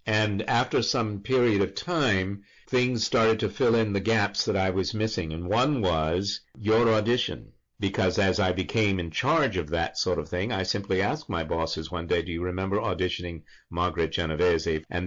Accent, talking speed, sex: American, 185 wpm, male